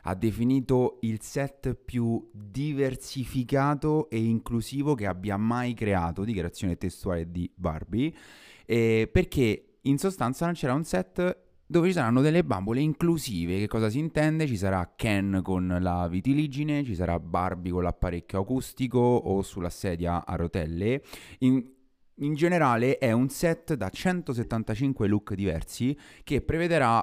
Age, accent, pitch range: 30-49, native, 95-130 Hz